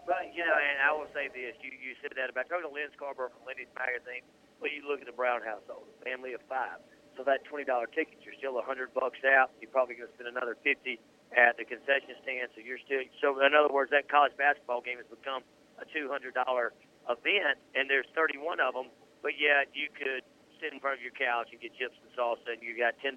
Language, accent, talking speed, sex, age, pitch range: English, American, 250 wpm, male, 50-69, 130-170 Hz